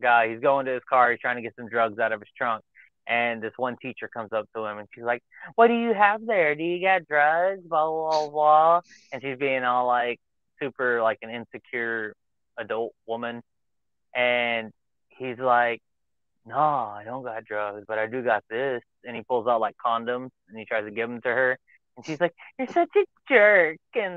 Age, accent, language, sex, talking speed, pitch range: 20-39, American, English, male, 210 wpm, 115-145 Hz